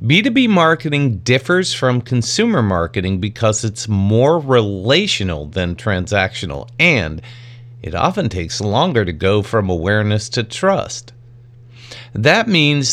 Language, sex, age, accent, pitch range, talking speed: English, male, 50-69, American, 105-140 Hz, 115 wpm